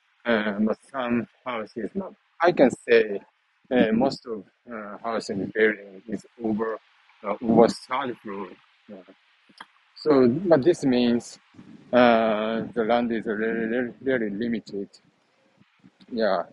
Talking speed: 125 wpm